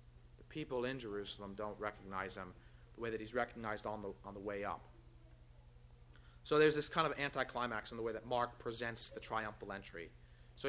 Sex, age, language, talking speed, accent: male, 30-49, English, 185 wpm, American